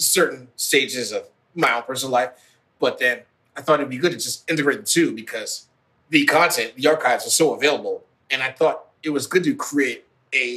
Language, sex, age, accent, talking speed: English, male, 30-49, American, 205 wpm